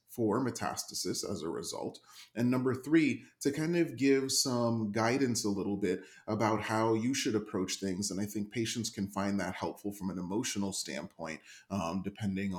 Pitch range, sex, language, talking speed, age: 100-115 Hz, male, English, 175 wpm, 30-49